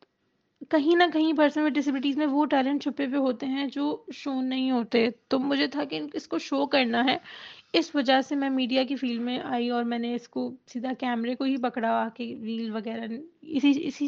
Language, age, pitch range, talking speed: Urdu, 20-39, 245-285 Hz, 215 wpm